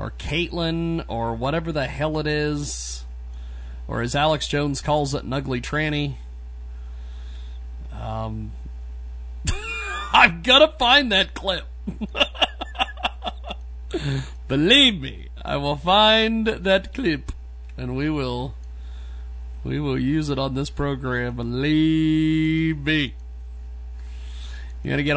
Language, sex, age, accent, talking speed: English, male, 40-59, American, 105 wpm